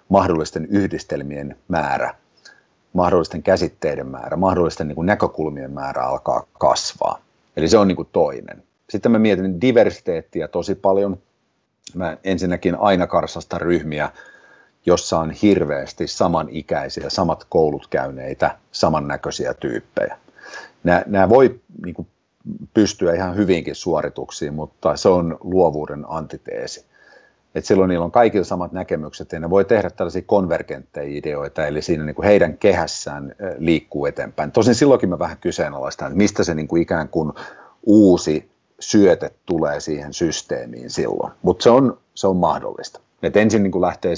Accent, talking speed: native, 130 wpm